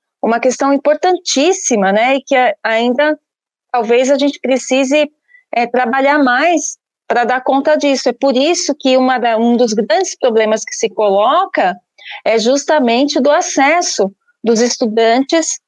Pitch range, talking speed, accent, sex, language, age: 235-305 Hz, 130 wpm, Brazilian, female, Portuguese, 30-49